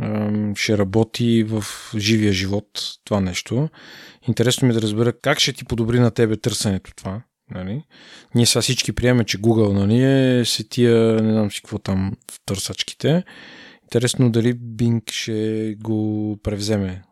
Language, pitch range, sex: Bulgarian, 105-130 Hz, male